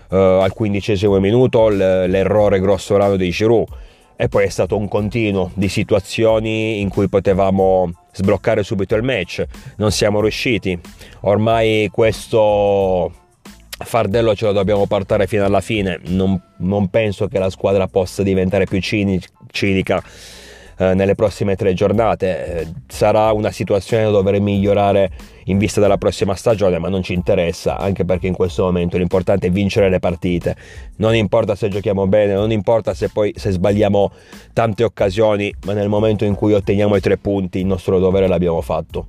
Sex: male